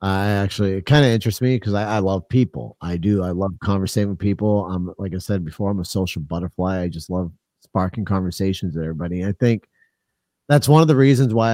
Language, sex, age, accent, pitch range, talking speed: English, male, 40-59, American, 100-130 Hz, 225 wpm